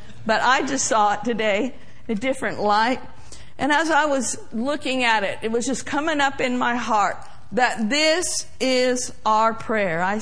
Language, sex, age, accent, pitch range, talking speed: English, female, 50-69, American, 205-280 Hz, 175 wpm